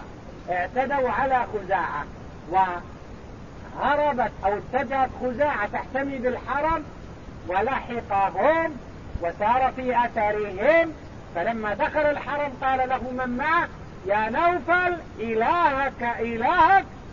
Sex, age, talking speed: male, 50-69, 80 wpm